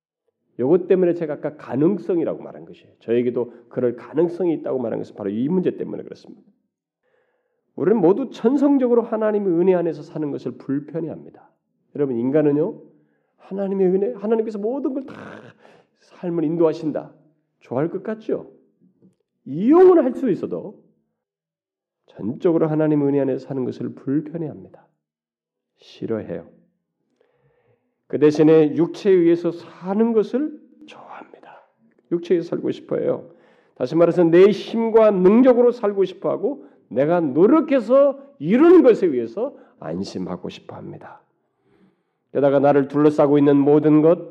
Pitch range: 150-230 Hz